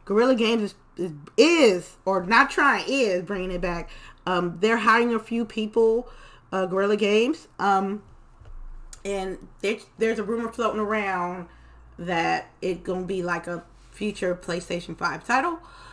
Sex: female